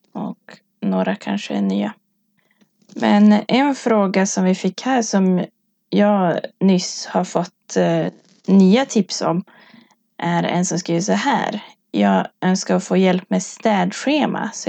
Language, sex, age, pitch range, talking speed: Swedish, female, 20-39, 175-210 Hz, 135 wpm